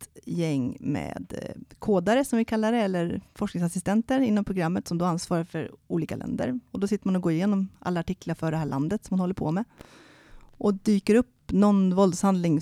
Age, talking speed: 30-49, 190 wpm